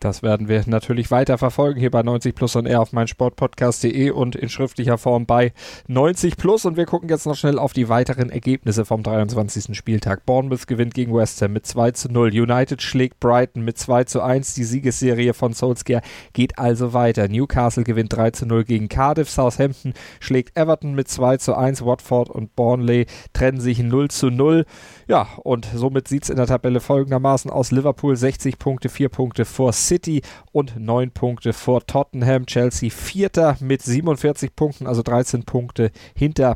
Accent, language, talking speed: German, German, 175 wpm